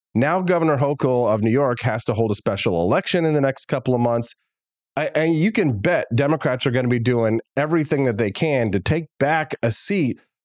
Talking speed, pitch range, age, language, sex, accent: 210 wpm, 100-135 Hz, 30-49, English, male, American